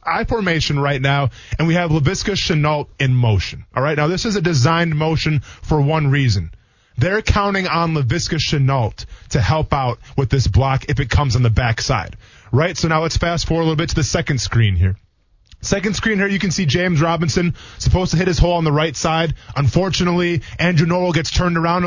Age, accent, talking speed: 20-39, American, 210 wpm